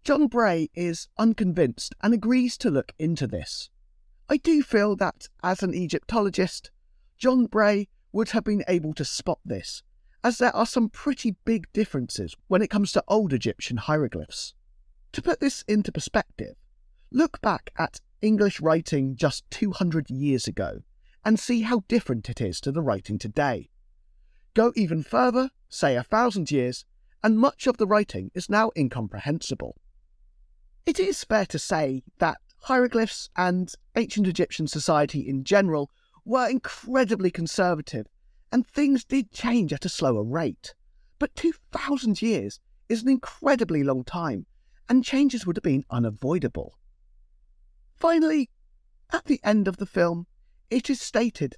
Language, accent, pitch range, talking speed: English, British, 150-235 Hz, 150 wpm